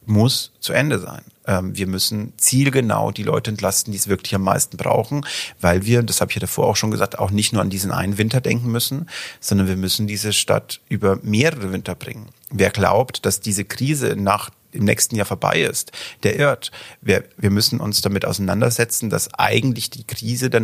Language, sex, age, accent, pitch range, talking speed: German, male, 40-59, German, 100-120 Hz, 195 wpm